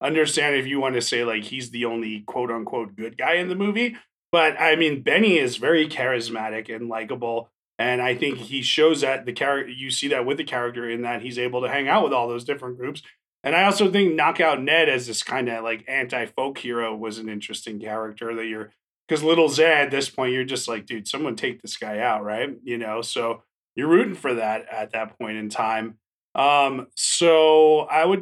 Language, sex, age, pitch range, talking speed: English, male, 30-49, 115-165 Hz, 220 wpm